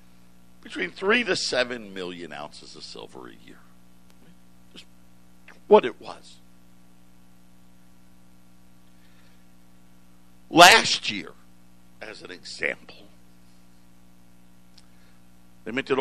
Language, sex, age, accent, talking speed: English, male, 60-79, American, 80 wpm